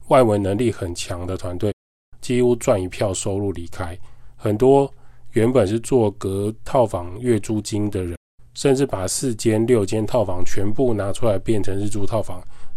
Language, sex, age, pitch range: Chinese, male, 20-39, 95-120 Hz